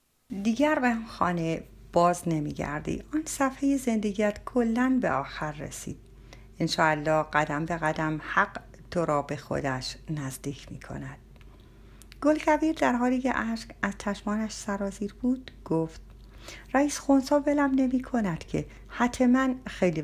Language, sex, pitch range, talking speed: Persian, female, 145-245 Hz, 125 wpm